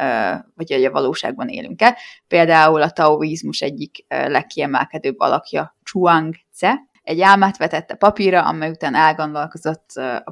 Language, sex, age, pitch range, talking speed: Hungarian, female, 20-39, 155-195 Hz, 130 wpm